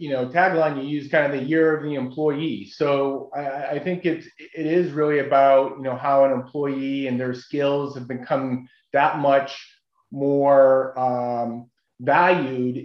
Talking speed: 165 wpm